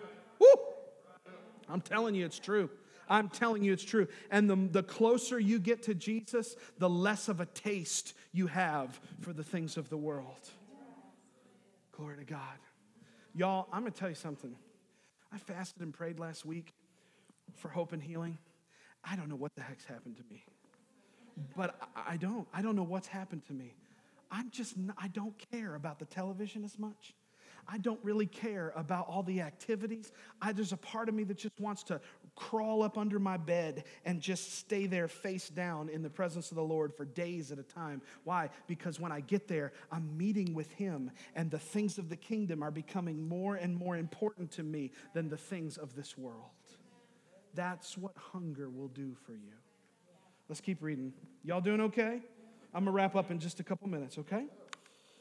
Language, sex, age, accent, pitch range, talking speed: English, male, 40-59, American, 165-210 Hz, 185 wpm